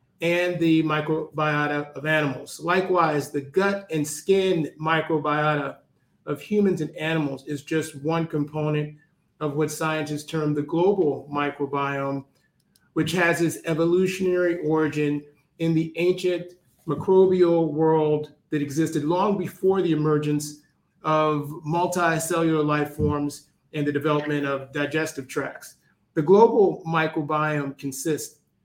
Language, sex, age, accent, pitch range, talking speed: English, male, 30-49, American, 150-170 Hz, 115 wpm